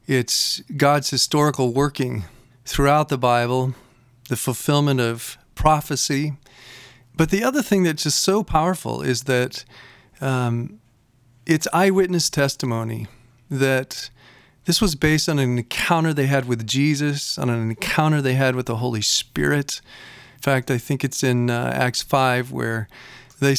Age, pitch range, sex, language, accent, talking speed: 40-59, 125-155 Hz, male, English, American, 140 wpm